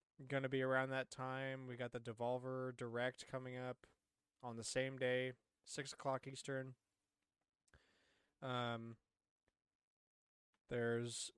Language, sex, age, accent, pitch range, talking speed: English, male, 20-39, American, 120-140 Hz, 115 wpm